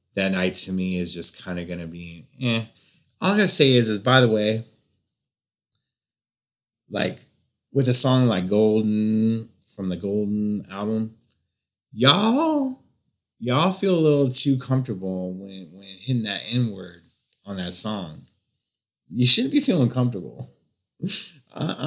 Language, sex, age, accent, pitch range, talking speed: English, male, 30-49, American, 100-125 Hz, 145 wpm